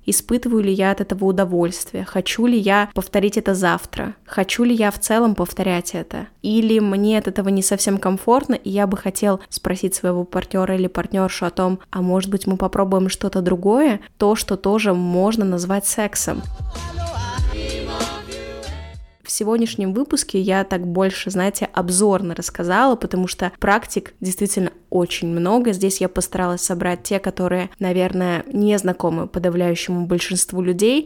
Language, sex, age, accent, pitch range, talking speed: Russian, female, 20-39, native, 180-210 Hz, 150 wpm